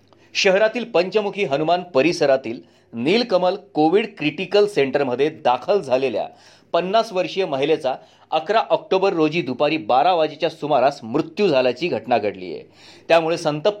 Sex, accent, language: male, native, Marathi